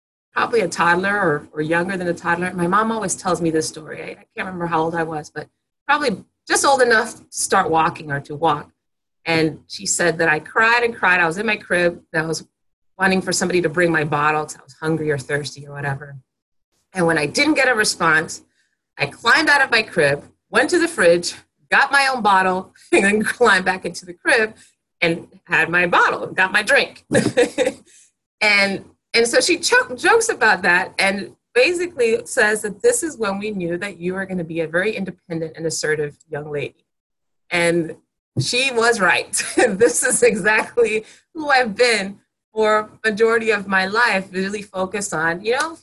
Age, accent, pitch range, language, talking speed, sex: 30-49, American, 165-240 Hz, English, 195 wpm, female